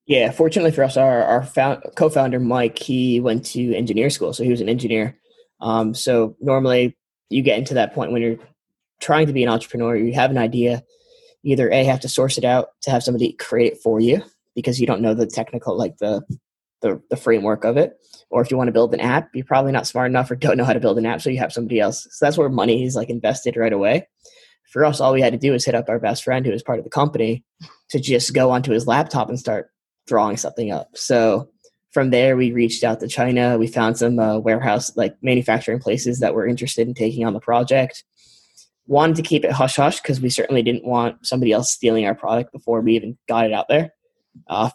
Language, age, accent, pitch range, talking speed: English, 10-29, American, 115-130 Hz, 235 wpm